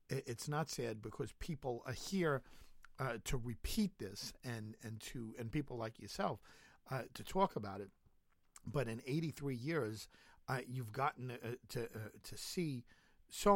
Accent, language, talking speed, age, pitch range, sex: American, English, 160 wpm, 50-69, 110-135 Hz, male